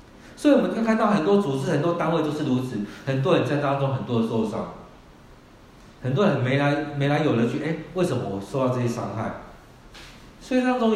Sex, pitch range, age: male, 115-160 Hz, 50-69